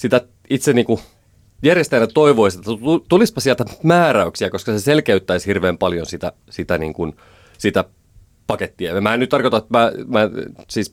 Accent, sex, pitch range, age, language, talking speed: native, male, 90-120 Hz, 30-49, Finnish, 155 wpm